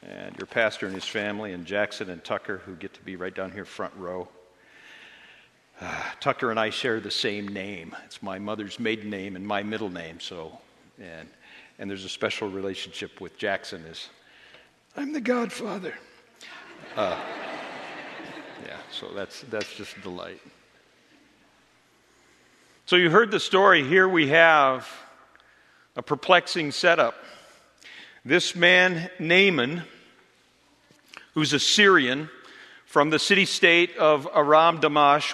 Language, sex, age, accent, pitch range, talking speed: English, male, 50-69, American, 130-170 Hz, 140 wpm